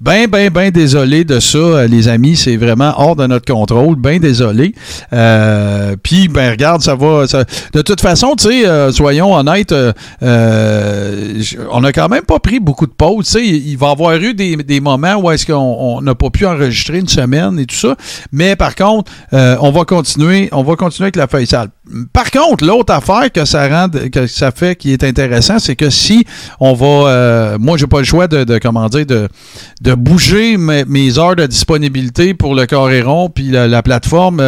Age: 50-69